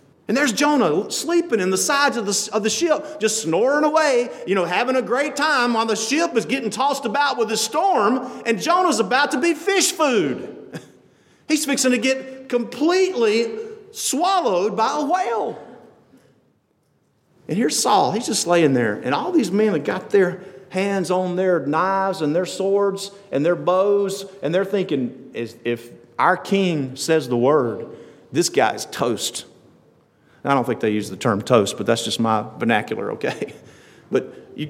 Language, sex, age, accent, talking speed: English, male, 50-69, American, 170 wpm